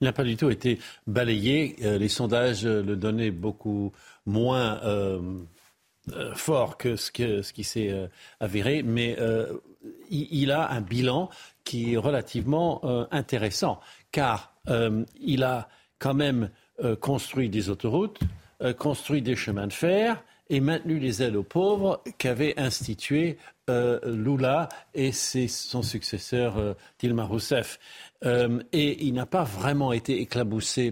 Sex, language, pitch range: male, French, 110-135 Hz